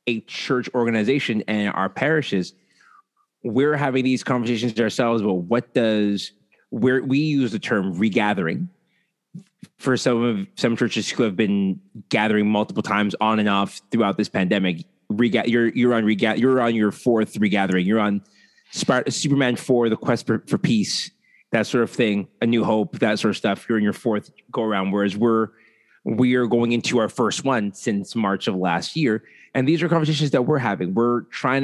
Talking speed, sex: 185 wpm, male